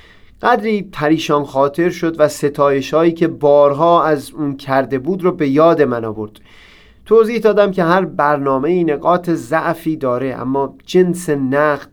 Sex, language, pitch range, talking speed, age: male, Persian, 150-185 Hz, 145 wpm, 30-49